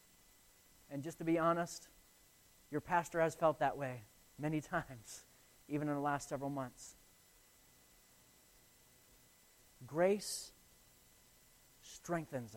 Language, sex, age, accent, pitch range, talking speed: English, male, 40-59, American, 140-205 Hz, 100 wpm